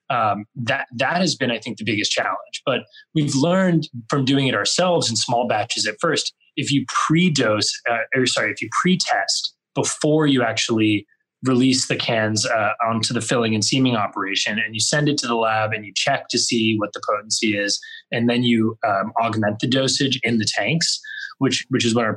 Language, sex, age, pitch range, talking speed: English, male, 20-39, 115-155 Hz, 210 wpm